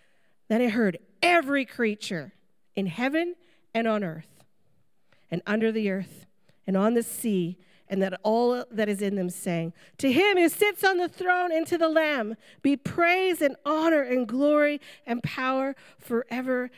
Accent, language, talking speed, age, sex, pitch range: American, English, 165 wpm, 40-59, female, 185-240 Hz